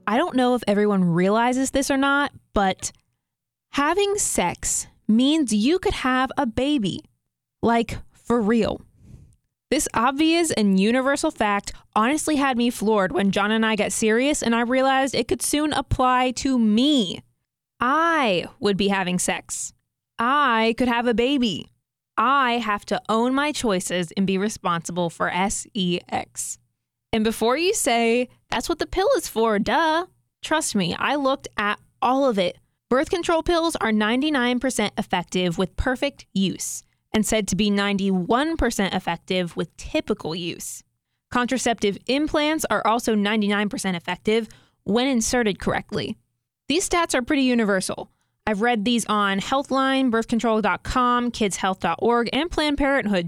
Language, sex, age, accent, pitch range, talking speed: English, female, 20-39, American, 200-270 Hz, 145 wpm